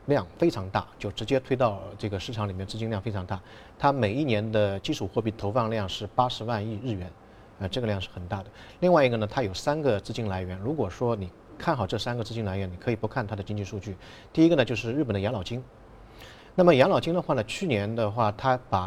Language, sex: Chinese, male